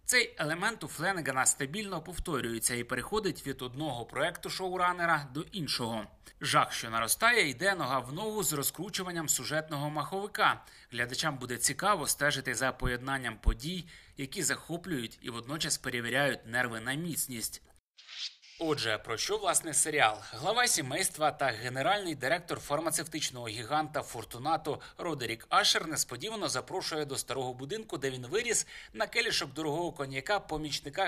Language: Ukrainian